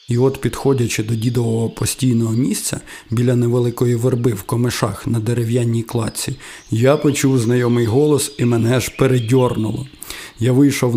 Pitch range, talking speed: 115-135 Hz, 135 wpm